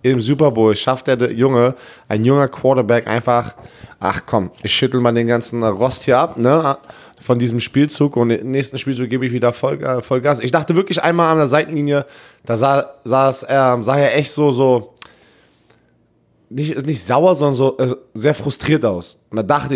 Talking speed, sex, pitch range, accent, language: 180 wpm, male, 110-140 Hz, German, German